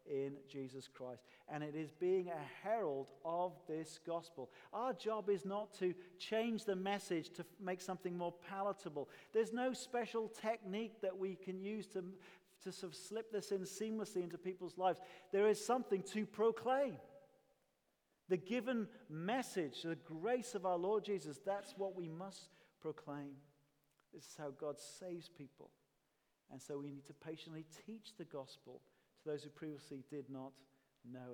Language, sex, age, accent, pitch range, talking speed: English, male, 40-59, British, 145-195 Hz, 160 wpm